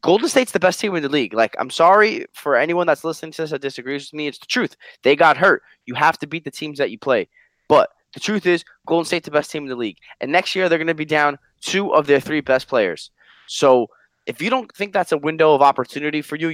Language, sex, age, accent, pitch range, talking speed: English, male, 20-39, American, 120-165 Hz, 270 wpm